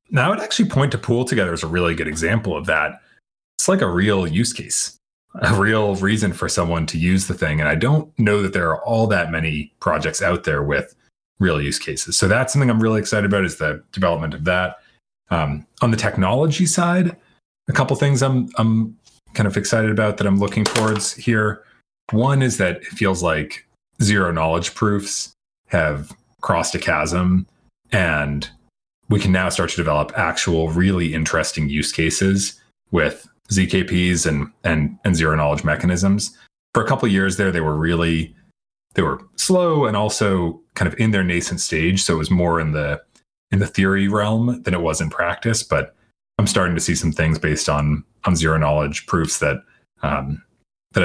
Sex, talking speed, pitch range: male, 190 wpm, 80-110 Hz